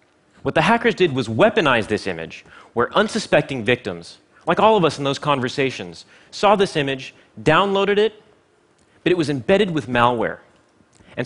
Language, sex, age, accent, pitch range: Chinese, male, 30-49, American, 125-180 Hz